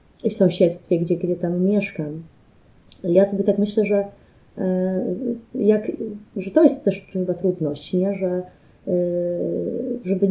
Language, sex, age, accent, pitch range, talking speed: Italian, female, 20-39, Polish, 185-220 Hz, 130 wpm